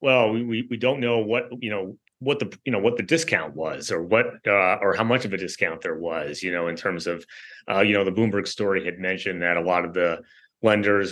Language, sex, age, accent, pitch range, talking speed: English, male, 30-49, American, 95-115 Hz, 250 wpm